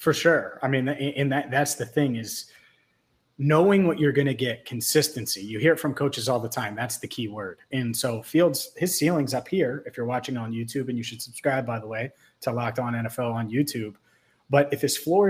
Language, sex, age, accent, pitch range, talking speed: English, male, 30-49, American, 120-150 Hz, 225 wpm